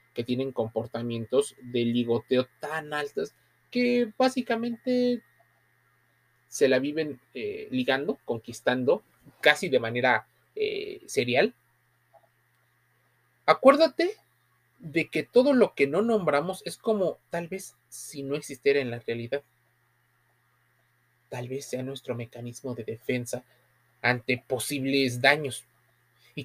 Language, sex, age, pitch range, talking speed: Spanish, male, 30-49, 125-150 Hz, 110 wpm